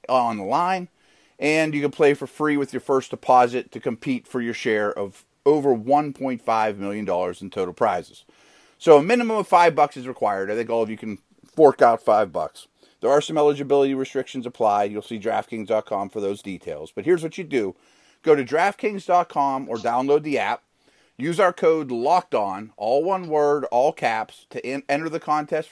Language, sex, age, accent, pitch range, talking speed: English, male, 30-49, American, 110-155 Hz, 185 wpm